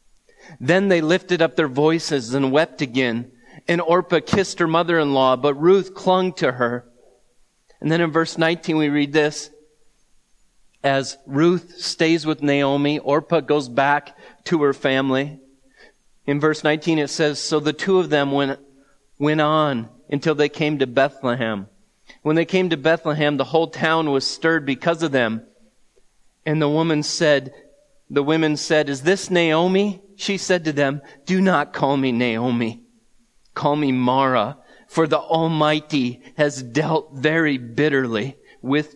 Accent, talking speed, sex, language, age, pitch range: American, 150 wpm, male, English, 30-49, 135-165 Hz